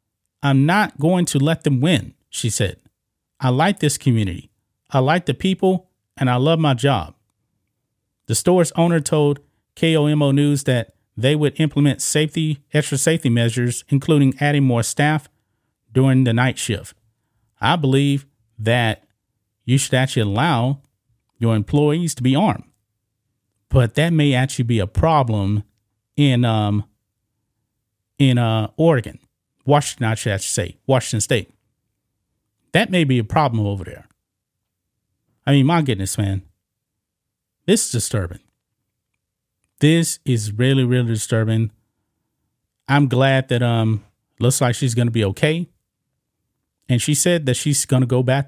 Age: 40-59